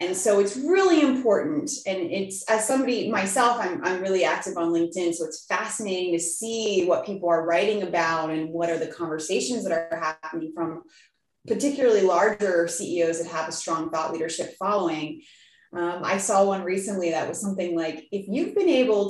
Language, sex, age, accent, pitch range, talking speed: English, female, 20-39, American, 175-235 Hz, 180 wpm